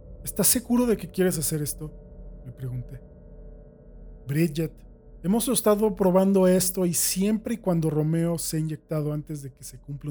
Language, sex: Spanish, male